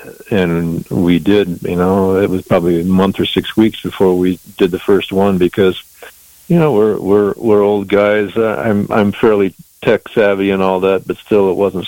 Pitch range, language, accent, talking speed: 85-100 Hz, English, American, 200 wpm